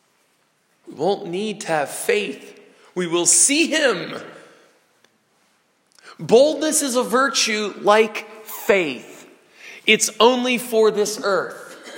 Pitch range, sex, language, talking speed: 195-260 Hz, male, English, 105 wpm